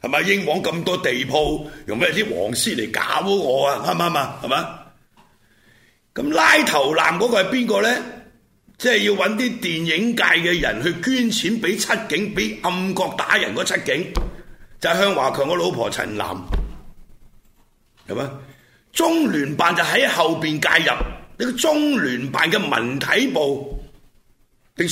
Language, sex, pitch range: Chinese, male, 140-225 Hz